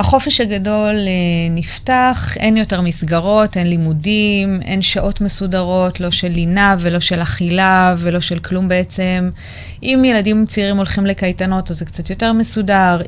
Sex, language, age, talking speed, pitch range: female, Hebrew, 20-39, 140 wpm, 175-210 Hz